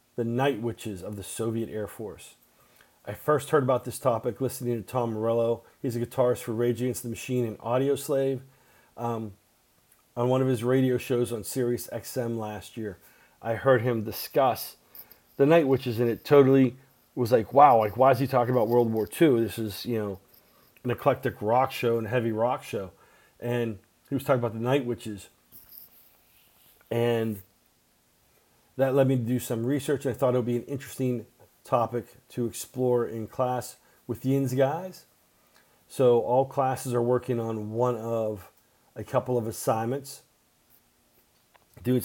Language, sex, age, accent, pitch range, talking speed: English, male, 40-59, American, 115-130 Hz, 170 wpm